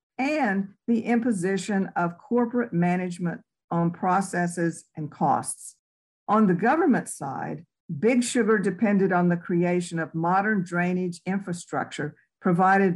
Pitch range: 165-220 Hz